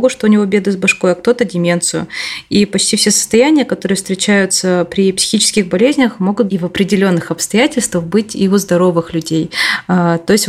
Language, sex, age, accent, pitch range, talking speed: Russian, female, 20-39, native, 175-205 Hz, 170 wpm